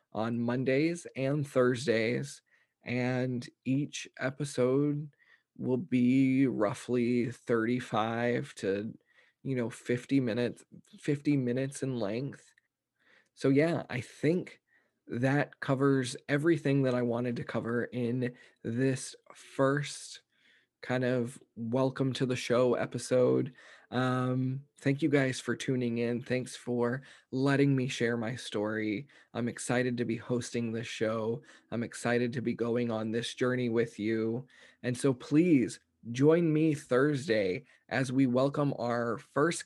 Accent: American